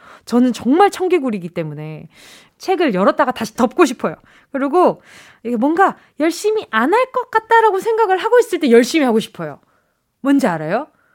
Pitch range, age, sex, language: 215-345 Hz, 20-39, female, Korean